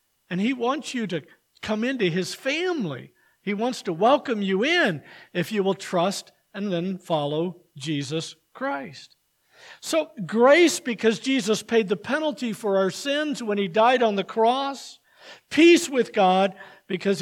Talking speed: 155 wpm